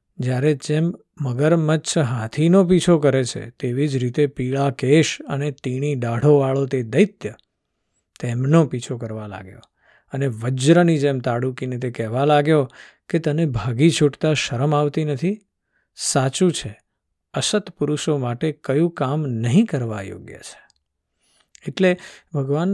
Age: 50-69